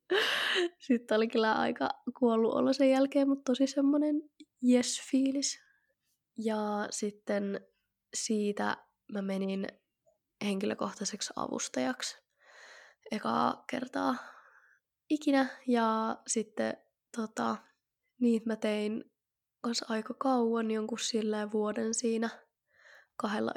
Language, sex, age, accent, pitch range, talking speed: Finnish, female, 20-39, native, 215-260 Hz, 90 wpm